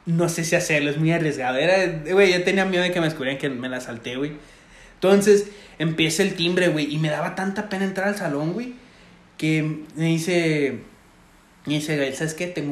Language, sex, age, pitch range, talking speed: Spanish, male, 20-39, 150-200 Hz, 210 wpm